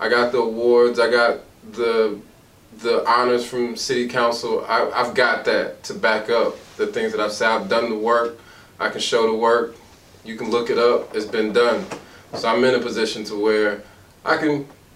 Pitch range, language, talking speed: 105-130 Hz, English, 200 wpm